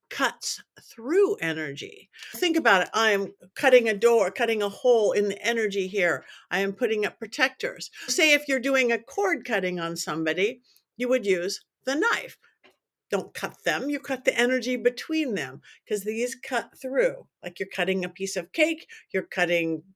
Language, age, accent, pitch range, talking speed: English, 50-69, American, 190-285 Hz, 175 wpm